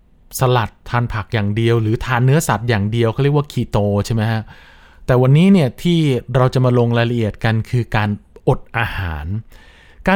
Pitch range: 110-140 Hz